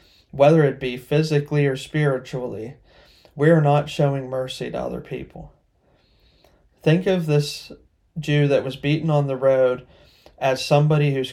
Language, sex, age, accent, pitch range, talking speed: English, male, 30-49, American, 125-150 Hz, 145 wpm